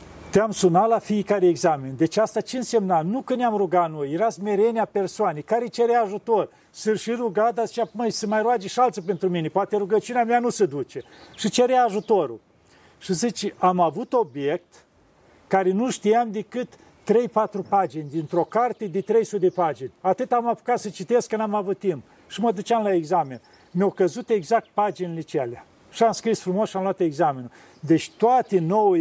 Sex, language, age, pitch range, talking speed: male, Romanian, 50-69, 165-215 Hz, 180 wpm